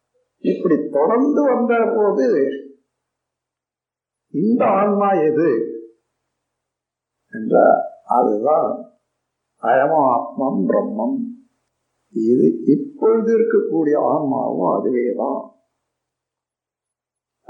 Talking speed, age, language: 55 wpm, 50-69, Tamil